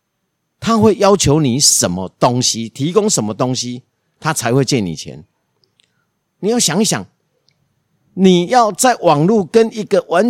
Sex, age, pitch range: male, 50-69, 130-210 Hz